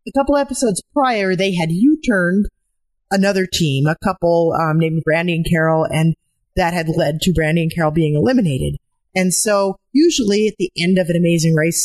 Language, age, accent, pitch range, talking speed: English, 30-49, American, 160-195 Hz, 180 wpm